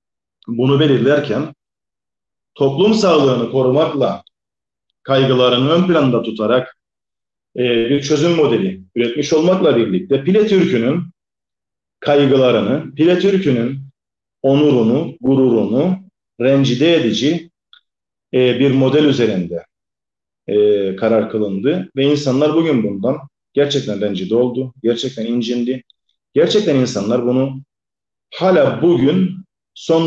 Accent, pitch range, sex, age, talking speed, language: native, 120-165 Hz, male, 40-59, 90 wpm, Turkish